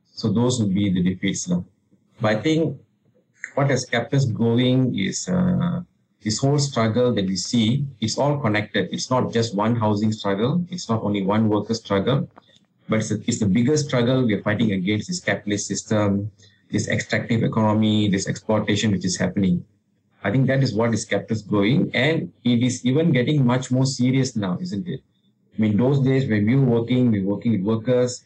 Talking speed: 200 wpm